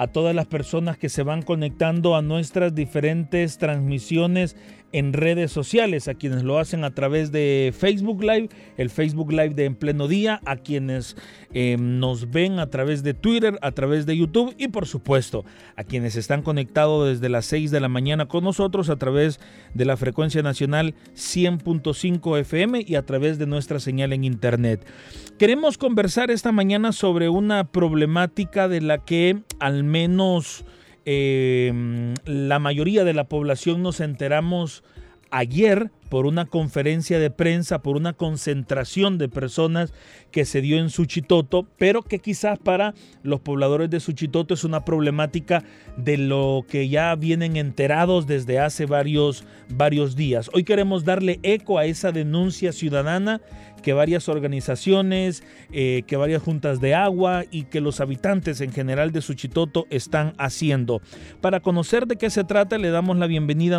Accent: Mexican